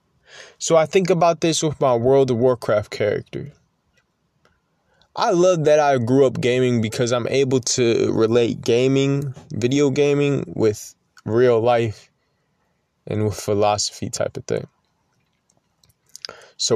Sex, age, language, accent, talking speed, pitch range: male, 20-39, English, American, 130 wpm, 120-150 Hz